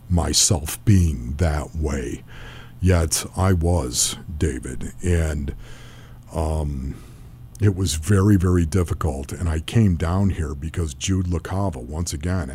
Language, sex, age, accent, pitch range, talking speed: English, male, 50-69, American, 80-95 Hz, 120 wpm